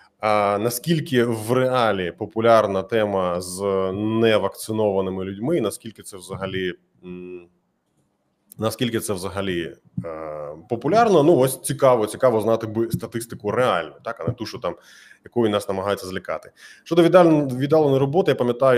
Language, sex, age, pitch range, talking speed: Ukrainian, male, 20-39, 105-150 Hz, 130 wpm